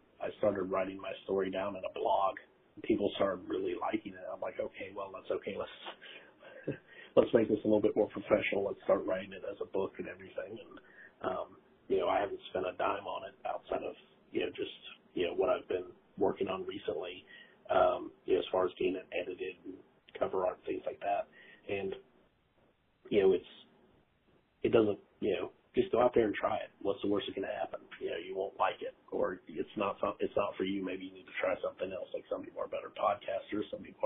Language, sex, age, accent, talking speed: English, male, 40-59, American, 225 wpm